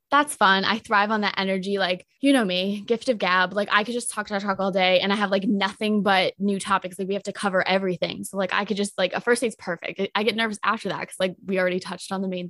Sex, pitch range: female, 190-235 Hz